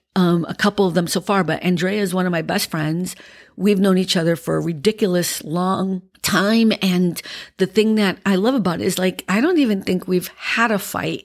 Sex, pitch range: female, 180-215 Hz